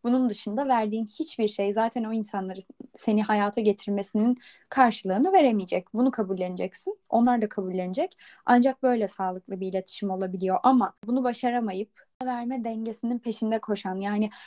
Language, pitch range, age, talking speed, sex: Turkish, 200-245 Hz, 10-29, 135 wpm, female